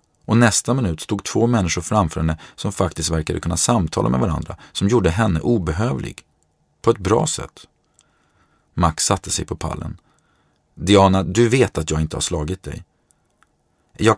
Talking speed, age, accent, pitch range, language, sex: 160 wpm, 40-59, Swedish, 85-105 Hz, English, male